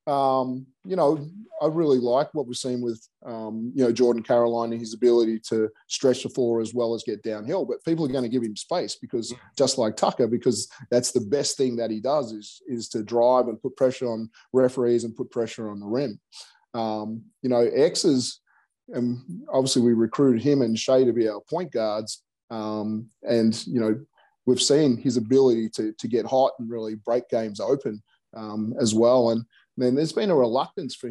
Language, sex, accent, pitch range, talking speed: English, male, Australian, 115-130 Hz, 205 wpm